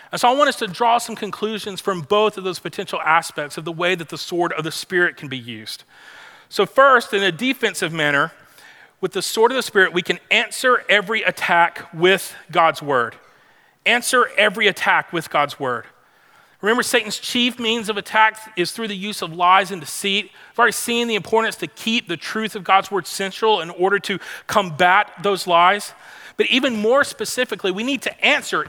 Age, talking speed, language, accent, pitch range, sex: 40-59, 195 wpm, English, American, 175-220 Hz, male